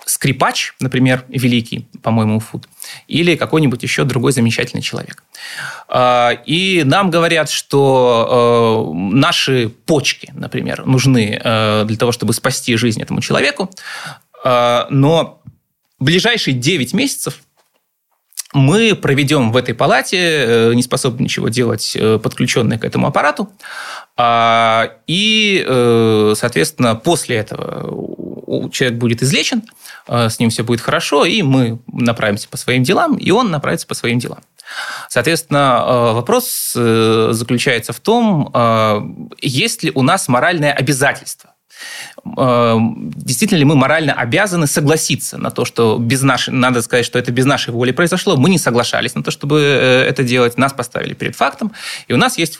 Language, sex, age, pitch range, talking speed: Russian, male, 20-39, 115-145 Hz, 130 wpm